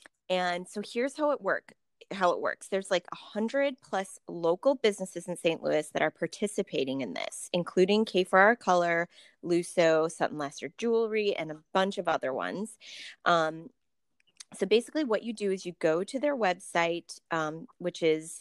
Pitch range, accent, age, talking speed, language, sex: 165-210 Hz, American, 20-39, 170 wpm, English, female